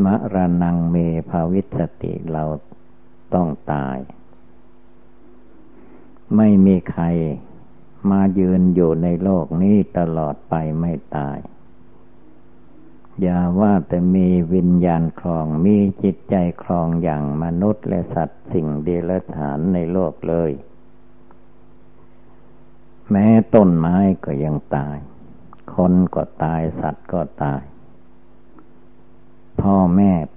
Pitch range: 80-95 Hz